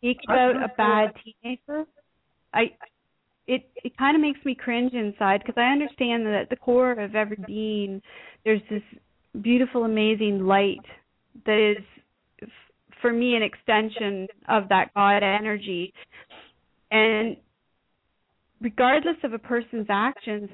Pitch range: 210-240 Hz